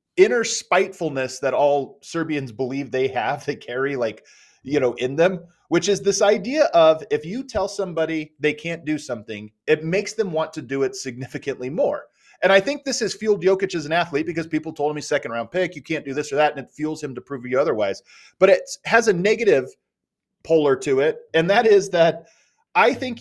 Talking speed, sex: 210 wpm, male